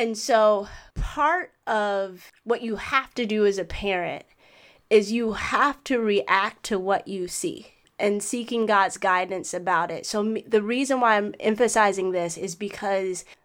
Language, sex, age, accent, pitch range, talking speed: English, female, 20-39, American, 185-225 Hz, 160 wpm